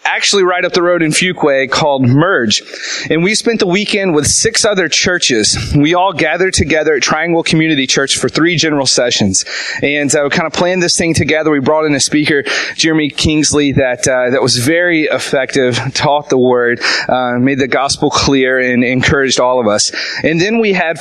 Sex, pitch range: male, 140-180 Hz